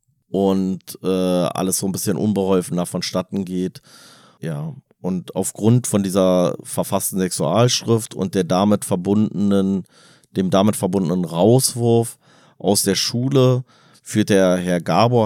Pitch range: 95-110 Hz